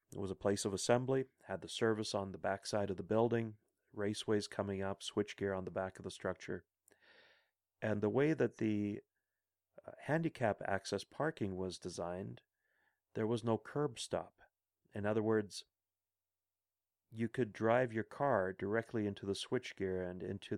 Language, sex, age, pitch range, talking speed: English, male, 40-59, 95-115 Hz, 160 wpm